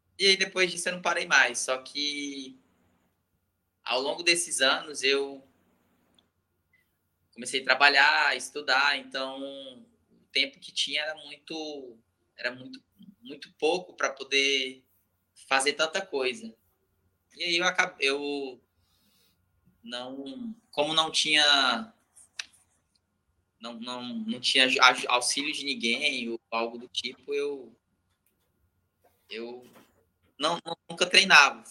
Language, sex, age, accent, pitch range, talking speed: Portuguese, male, 20-39, Brazilian, 110-150 Hz, 115 wpm